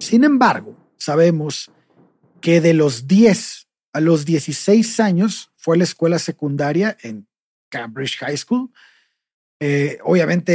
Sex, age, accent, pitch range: male, 40-59, Mexican, 150-200 Hz